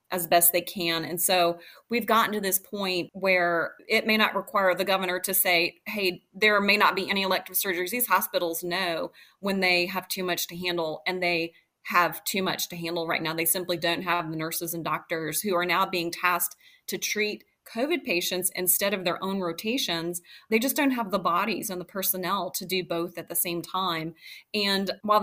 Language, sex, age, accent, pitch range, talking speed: English, female, 30-49, American, 175-200 Hz, 205 wpm